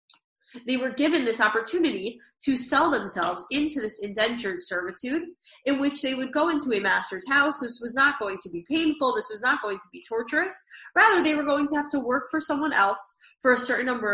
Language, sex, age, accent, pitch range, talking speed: English, female, 20-39, American, 210-295 Hz, 210 wpm